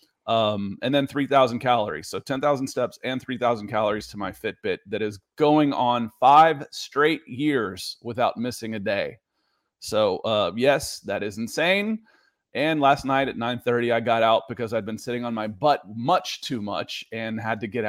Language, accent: English, American